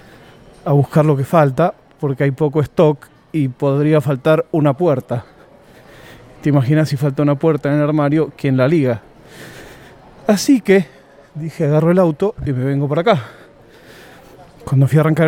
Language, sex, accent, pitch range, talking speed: Spanish, male, Argentinian, 145-185 Hz, 160 wpm